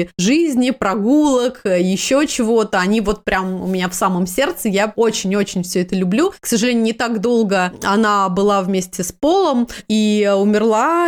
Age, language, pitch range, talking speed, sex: 20-39, Russian, 210-265 Hz, 155 wpm, female